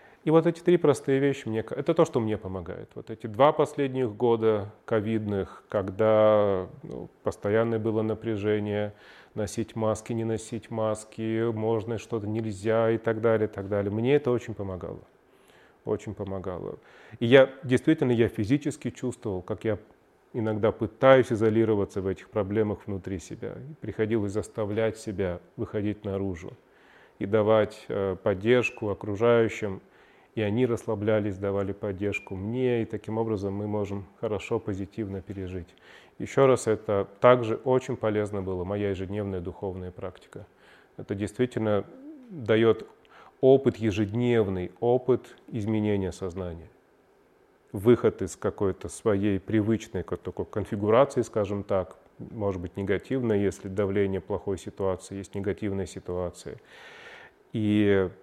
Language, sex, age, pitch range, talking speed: Russian, male, 30-49, 100-115 Hz, 120 wpm